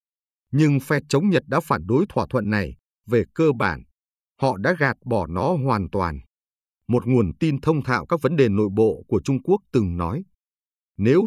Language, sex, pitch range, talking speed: Vietnamese, male, 85-140 Hz, 190 wpm